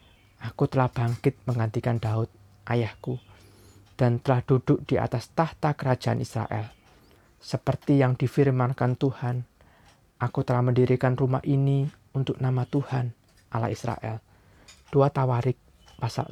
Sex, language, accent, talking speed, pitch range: male, Indonesian, native, 115 wpm, 110-135 Hz